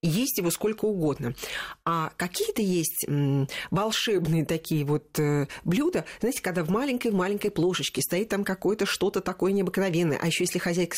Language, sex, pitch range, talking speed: Russian, female, 170-220 Hz, 140 wpm